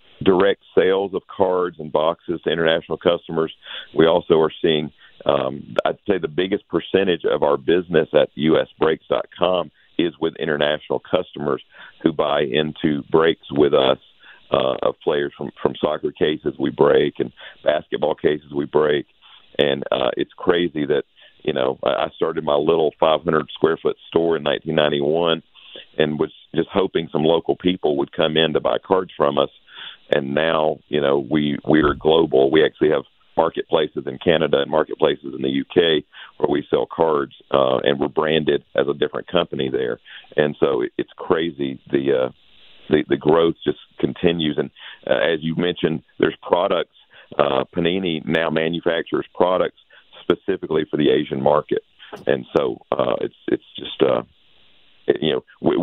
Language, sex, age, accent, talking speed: English, male, 50-69, American, 160 wpm